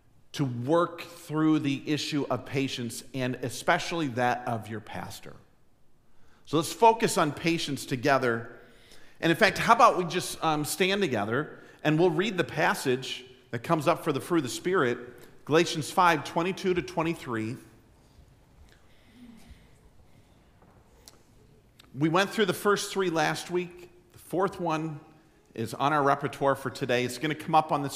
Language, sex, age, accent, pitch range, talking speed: English, male, 50-69, American, 120-165 Hz, 155 wpm